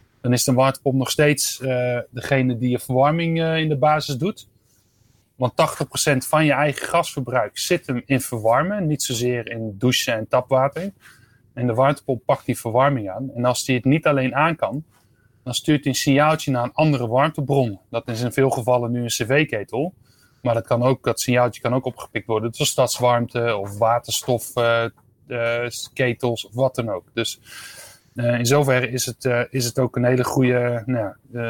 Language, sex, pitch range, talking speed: Dutch, male, 120-140 Hz, 190 wpm